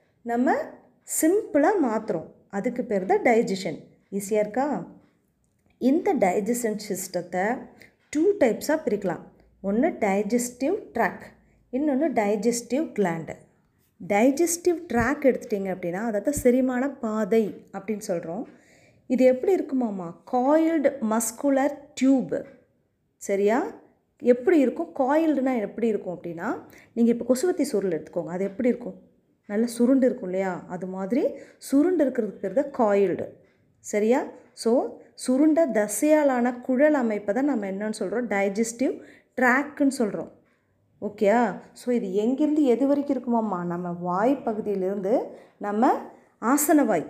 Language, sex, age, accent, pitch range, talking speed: Tamil, female, 30-49, native, 205-275 Hz, 105 wpm